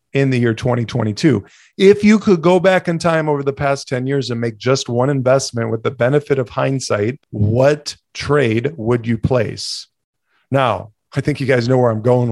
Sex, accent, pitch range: male, American, 120-150 Hz